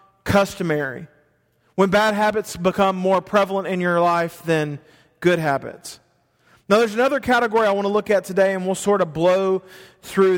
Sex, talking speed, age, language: male, 170 wpm, 40-59, English